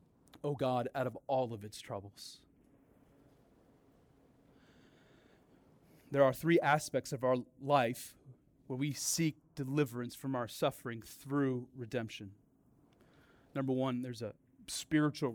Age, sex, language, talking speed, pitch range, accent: 30-49, male, English, 115 wpm, 130-165 Hz, American